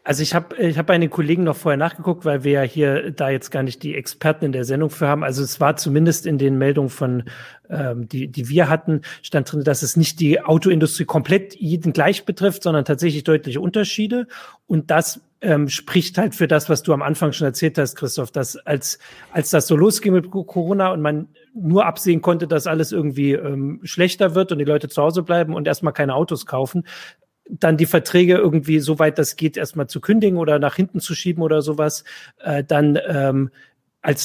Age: 40-59